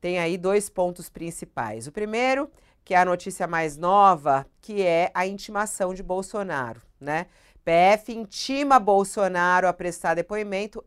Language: Portuguese